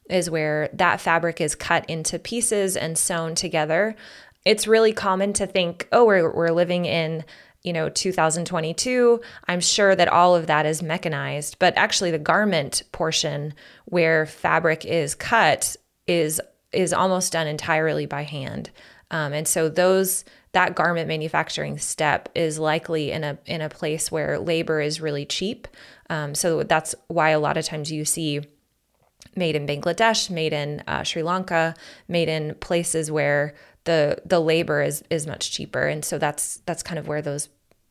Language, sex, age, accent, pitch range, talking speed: English, female, 20-39, American, 155-180 Hz, 165 wpm